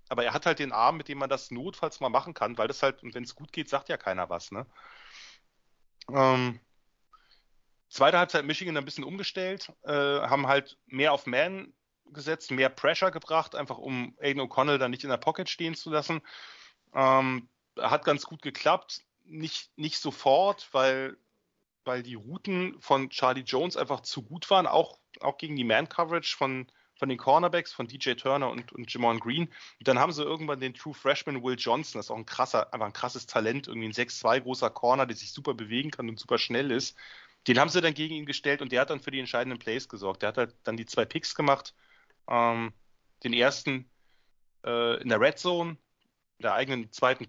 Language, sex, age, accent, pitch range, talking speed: German, male, 30-49, German, 125-155 Hz, 200 wpm